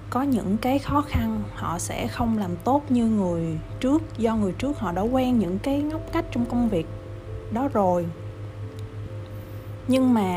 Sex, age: female, 20-39